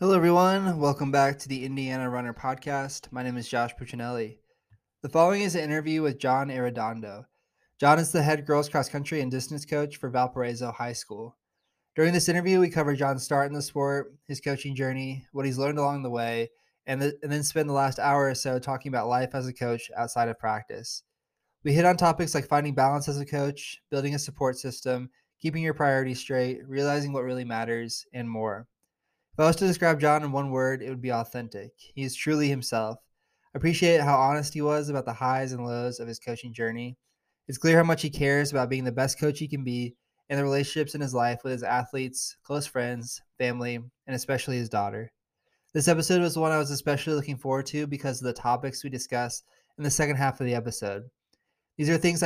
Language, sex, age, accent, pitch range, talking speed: English, male, 20-39, American, 125-145 Hz, 210 wpm